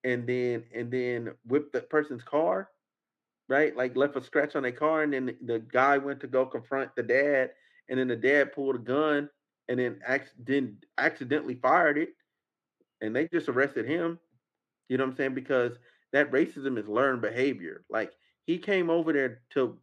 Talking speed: 190 wpm